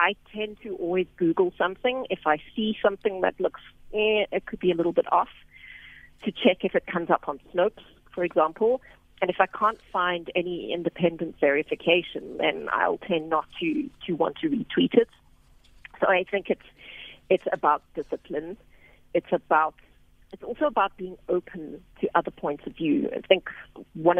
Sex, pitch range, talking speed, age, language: female, 160-210 Hz, 175 wpm, 40-59, English